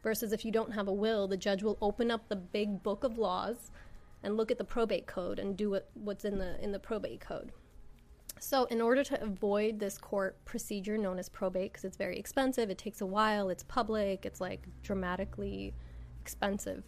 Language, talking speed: English, 205 wpm